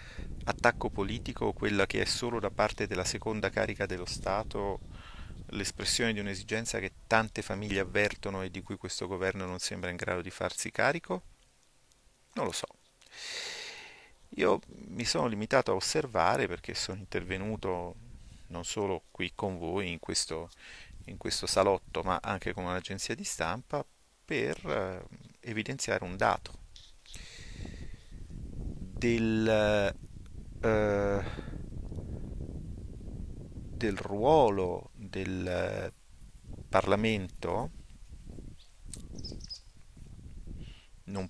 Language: Italian